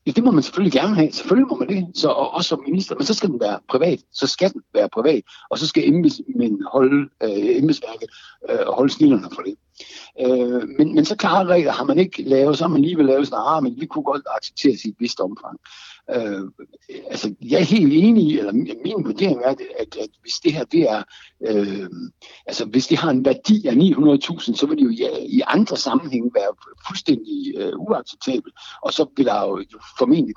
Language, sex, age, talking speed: Danish, male, 60-79, 215 wpm